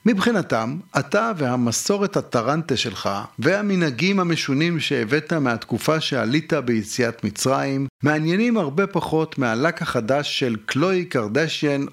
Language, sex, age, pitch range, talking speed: Hebrew, male, 50-69, 120-175 Hz, 100 wpm